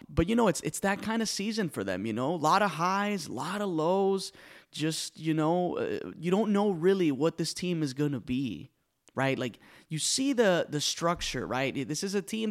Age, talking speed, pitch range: 30-49, 230 wpm, 125-165 Hz